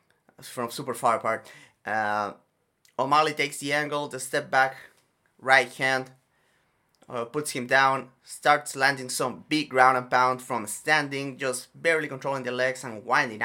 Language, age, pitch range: English, 20-39, 120-140 Hz